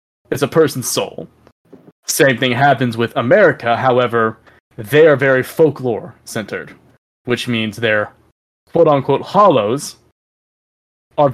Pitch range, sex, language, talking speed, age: 110-140 Hz, male, English, 105 wpm, 20-39